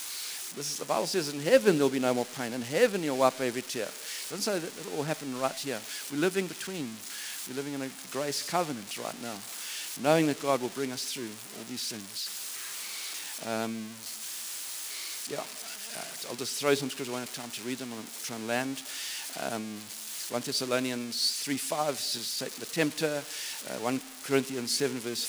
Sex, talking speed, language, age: male, 185 wpm, English, 60-79